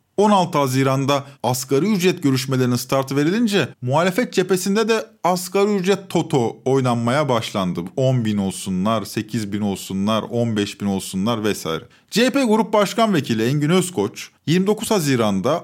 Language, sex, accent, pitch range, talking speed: Turkish, male, native, 130-195 Hz, 115 wpm